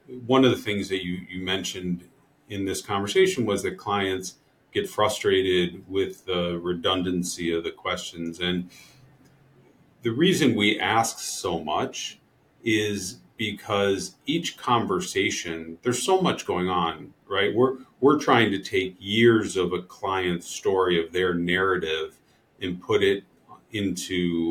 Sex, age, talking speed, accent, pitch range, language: male, 40-59, 135 wpm, American, 90-125 Hz, English